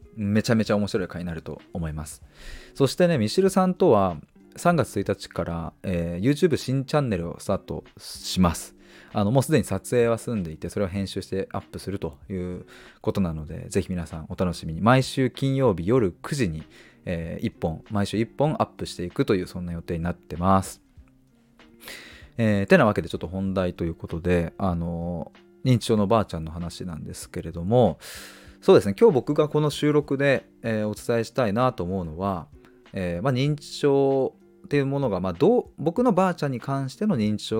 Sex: male